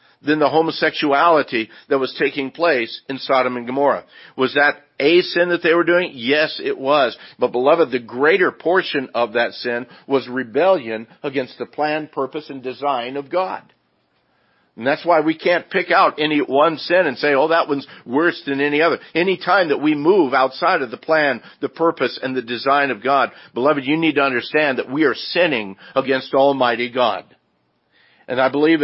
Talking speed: 185 wpm